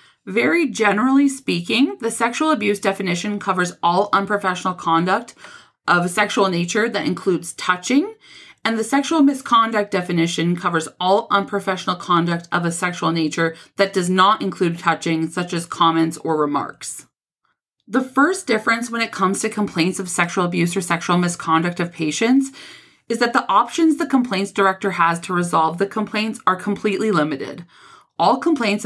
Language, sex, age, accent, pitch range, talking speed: English, female, 30-49, American, 175-225 Hz, 155 wpm